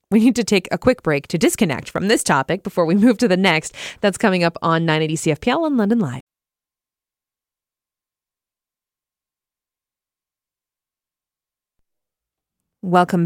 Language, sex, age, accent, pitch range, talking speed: English, female, 20-39, American, 170-225 Hz, 125 wpm